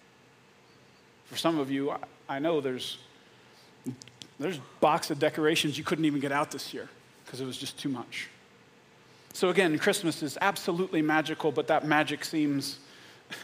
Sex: male